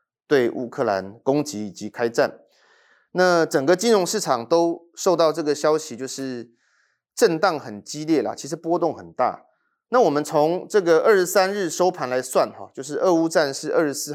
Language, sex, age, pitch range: Chinese, male, 30-49, 125-165 Hz